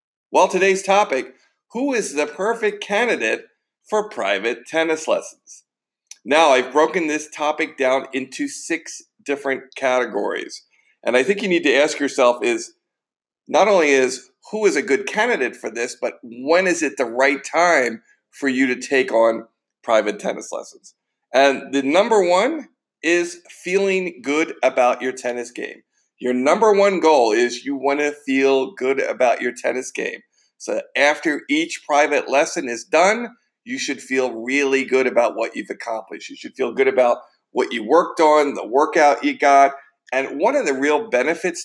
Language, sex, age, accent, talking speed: English, male, 50-69, American, 165 wpm